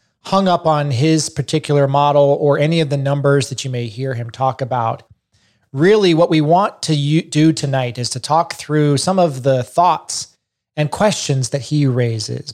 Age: 30-49